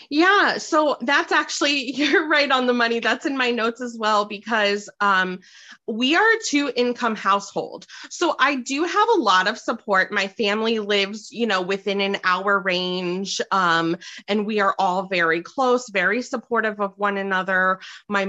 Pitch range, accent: 185-230 Hz, American